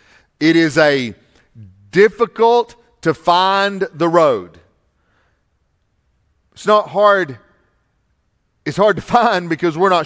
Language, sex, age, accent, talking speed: English, male, 40-59, American, 105 wpm